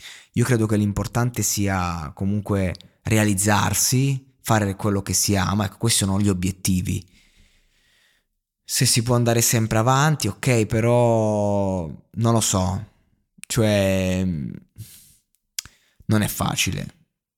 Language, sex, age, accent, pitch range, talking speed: Italian, male, 20-39, native, 95-110 Hz, 105 wpm